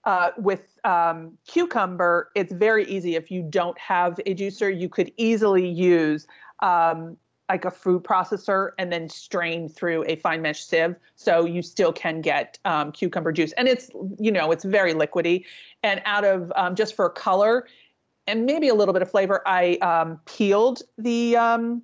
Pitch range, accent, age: 170-205 Hz, American, 40-59